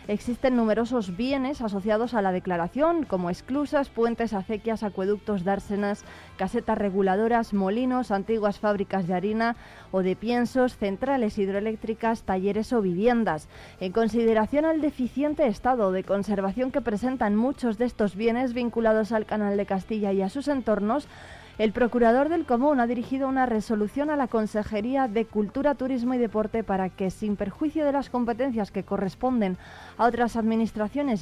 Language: Spanish